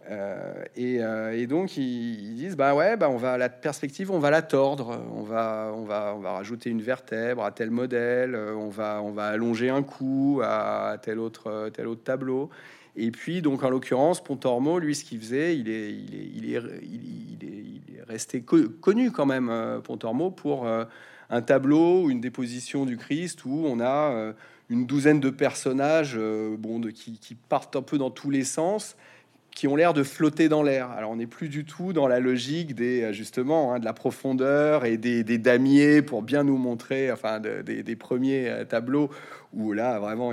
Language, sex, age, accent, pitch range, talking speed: French, male, 30-49, French, 115-145 Hz, 200 wpm